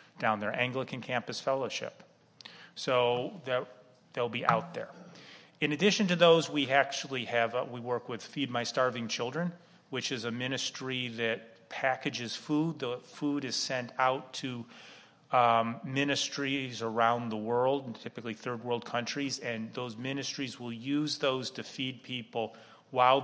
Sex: male